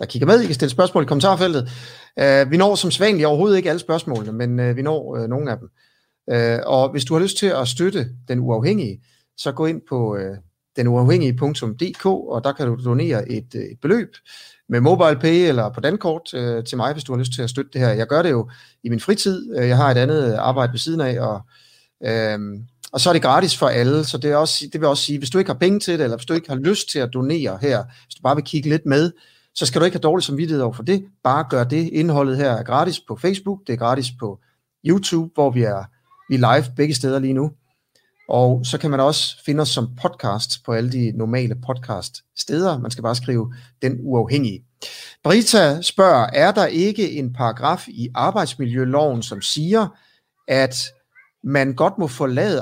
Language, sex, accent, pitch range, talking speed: Danish, male, native, 120-160 Hz, 220 wpm